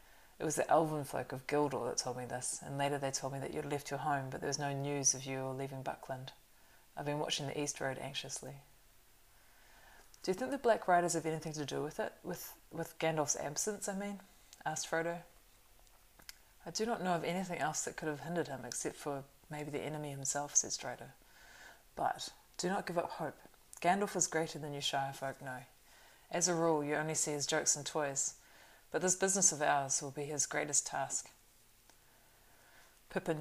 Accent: Australian